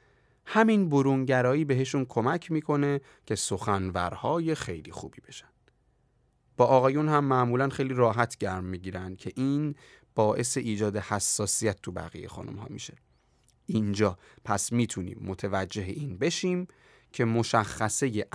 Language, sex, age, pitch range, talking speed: Persian, male, 30-49, 100-130 Hz, 120 wpm